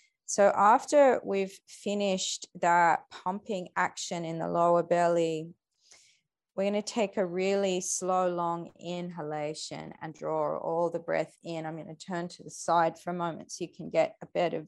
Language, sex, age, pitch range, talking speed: English, female, 20-39, 175-220 Hz, 165 wpm